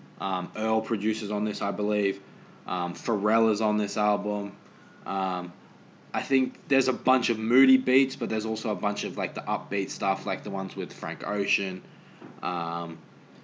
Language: English